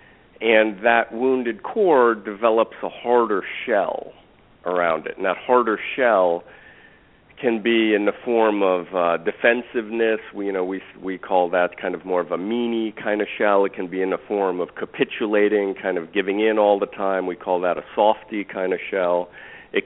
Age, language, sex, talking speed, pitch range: 40-59, English, male, 185 wpm, 95-115 Hz